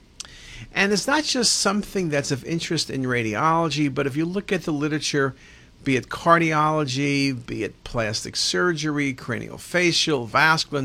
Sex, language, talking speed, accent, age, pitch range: male, English, 150 wpm, American, 50-69, 125-165 Hz